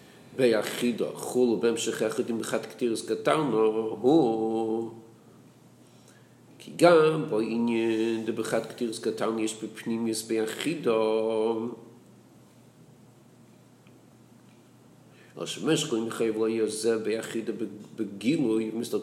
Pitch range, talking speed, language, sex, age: 110-125 Hz, 60 wpm, English, male, 50-69